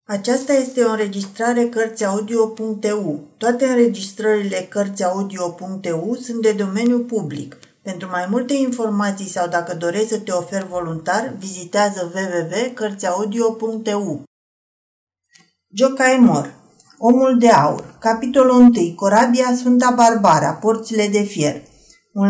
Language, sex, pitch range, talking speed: Romanian, female, 185-230 Hz, 105 wpm